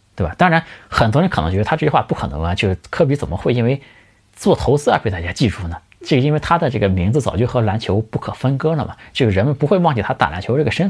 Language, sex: Chinese, male